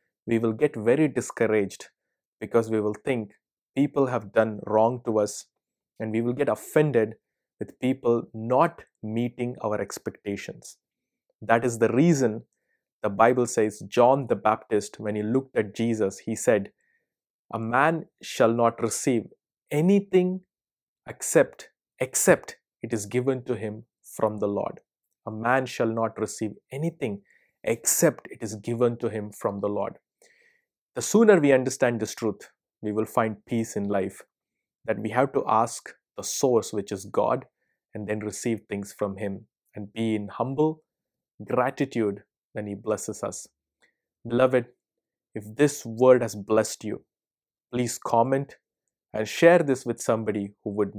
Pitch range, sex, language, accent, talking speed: 105-130 Hz, male, English, Indian, 150 wpm